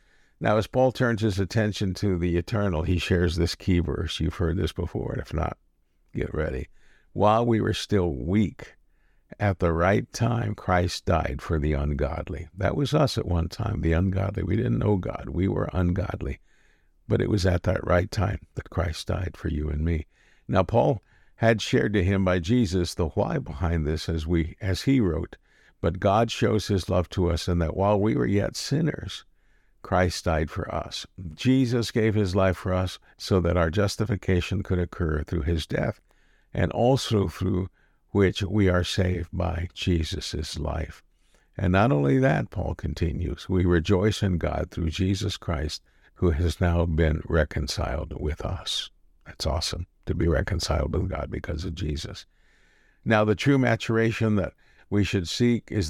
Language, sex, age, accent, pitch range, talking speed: English, male, 50-69, American, 85-105 Hz, 175 wpm